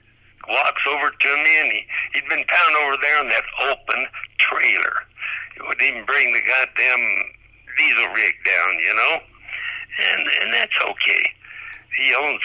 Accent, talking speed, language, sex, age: American, 155 wpm, English, male, 60-79